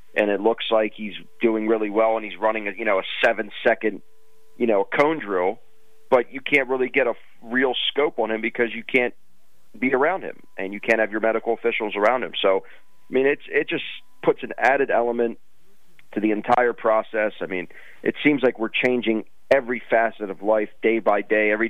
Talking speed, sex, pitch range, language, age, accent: 210 wpm, male, 105-125 Hz, English, 30-49, American